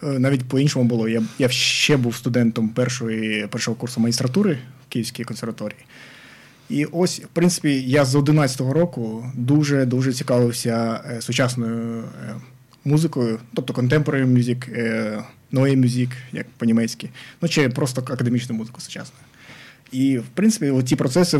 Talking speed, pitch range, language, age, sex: 135 wpm, 120-140 Hz, Ukrainian, 20-39, male